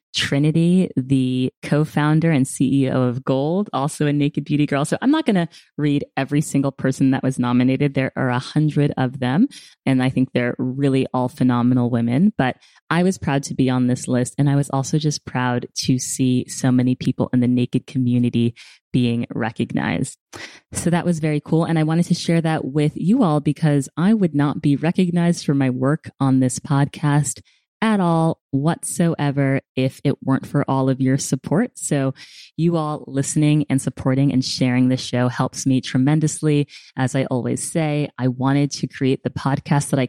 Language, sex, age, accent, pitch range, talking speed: English, female, 20-39, American, 130-150 Hz, 190 wpm